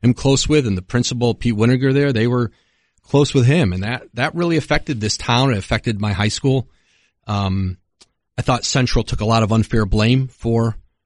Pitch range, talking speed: 100-125 Hz, 200 wpm